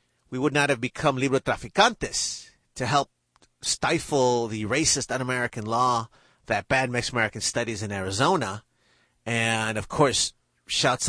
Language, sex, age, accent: English, male, 30-49, American